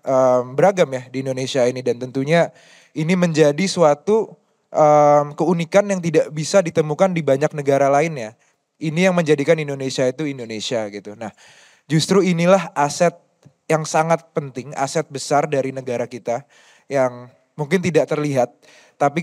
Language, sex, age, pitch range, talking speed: Indonesian, male, 20-39, 135-160 Hz, 140 wpm